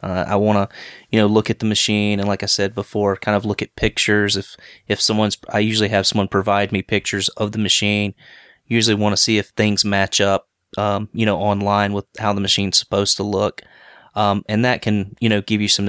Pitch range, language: 100-110 Hz, English